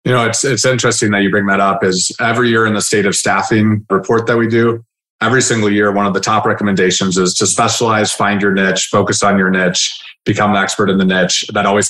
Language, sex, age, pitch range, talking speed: English, male, 30-49, 100-110 Hz, 240 wpm